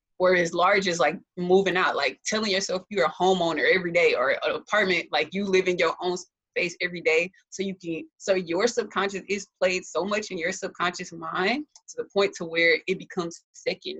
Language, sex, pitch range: English, female, 175-230 Hz